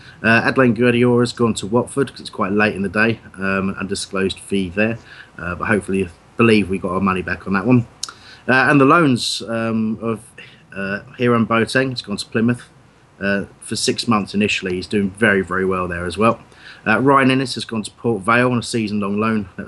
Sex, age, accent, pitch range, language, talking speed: male, 30-49, British, 100-125 Hz, English, 215 wpm